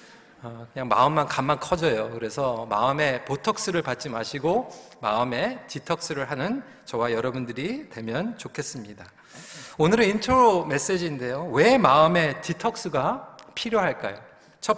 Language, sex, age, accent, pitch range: Korean, male, 40-59, native, 150-235 Hz